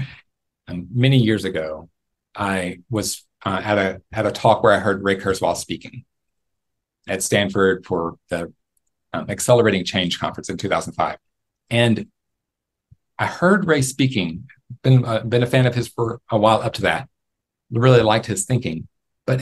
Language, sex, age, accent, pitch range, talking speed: English, male, 40-59, American, 95-125 Hz, 160 wpm